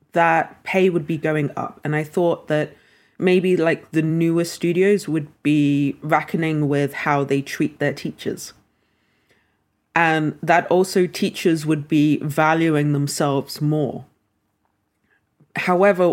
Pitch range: 150-185 Hz